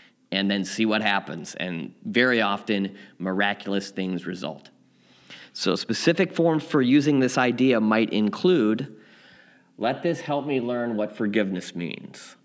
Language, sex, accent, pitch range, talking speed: English, male, American, 105-145 Hz, 135 wpm